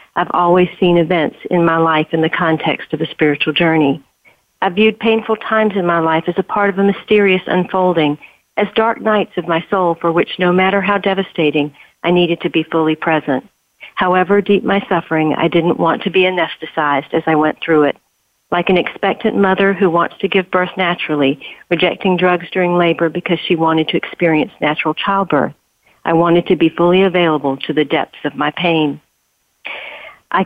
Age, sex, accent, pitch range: 50-69, female, American, 160-190 Hz